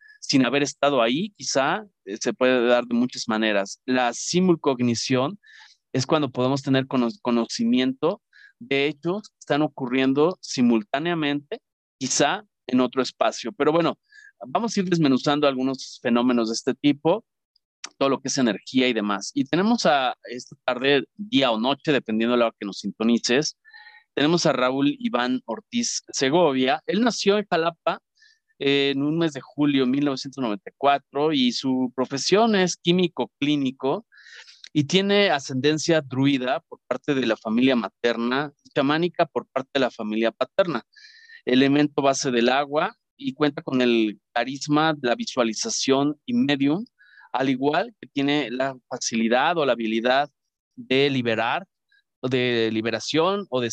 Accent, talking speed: Mexican, 145 wpm